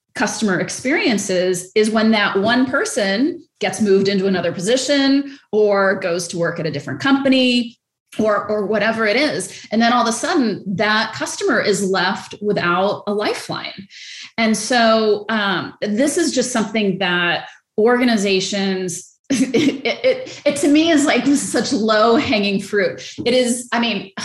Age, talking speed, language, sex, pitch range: 30-49, 155 wpm, English, female, 195-245 Hz